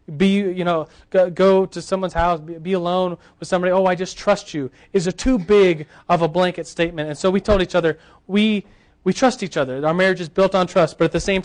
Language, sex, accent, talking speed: English, male, American, 245 wpm